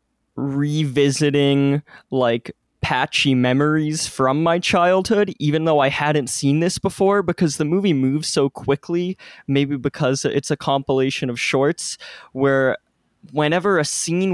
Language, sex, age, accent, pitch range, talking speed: English, male, 20-39, American, 125-150 Hz, 130 wpm